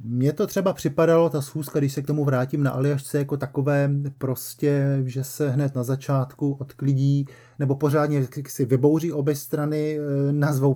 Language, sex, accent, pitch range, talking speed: Czech, male, native, 130-145 Hz, 160 wpm